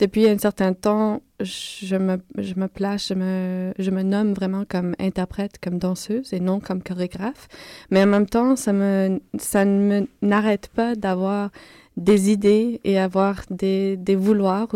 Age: 20-39